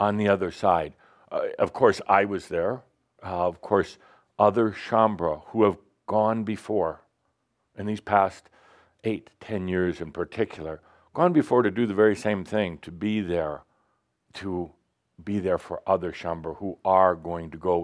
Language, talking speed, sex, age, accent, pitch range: English, 165 wpm, male, 60-79, American, 85-105 Hz